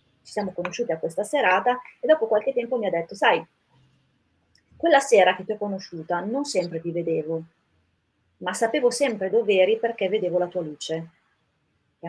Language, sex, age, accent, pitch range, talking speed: Italian, female, 30-49, native, 175-215 Hz, 170 wpm